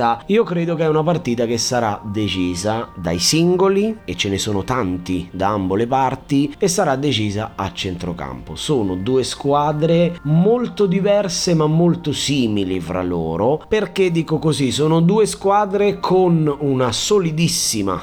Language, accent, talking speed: Italian, native, 145 wpm